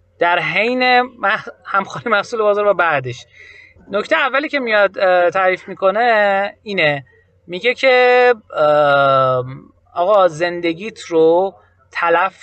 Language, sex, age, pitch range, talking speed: Persian, male, 30-49, 150-210 Hz, 105 wpm